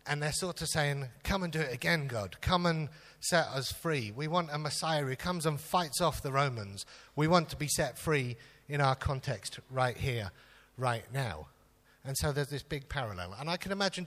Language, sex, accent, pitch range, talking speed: English, male, British, 115-145 Hz, 215 wpm